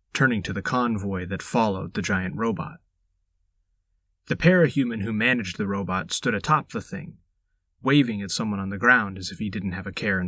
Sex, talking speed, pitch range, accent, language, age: male, 195 wpm, 90-120 Hz, American, English, 30-49